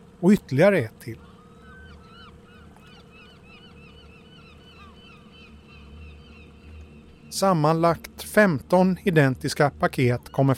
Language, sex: English, male